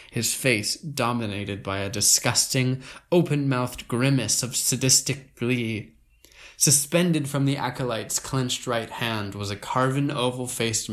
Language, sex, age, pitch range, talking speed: English, male, 20-39, 105-130 Hz, 120 wpm